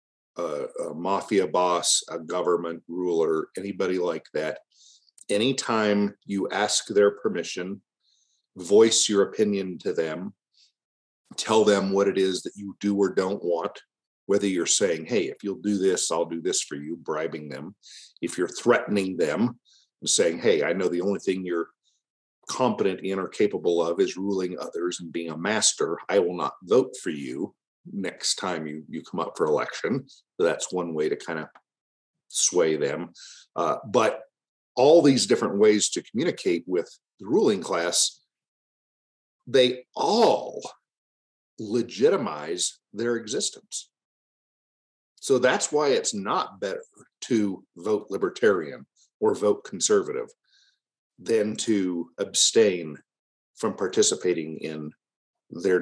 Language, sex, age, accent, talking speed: English, male, 50-69, American, 140 wpm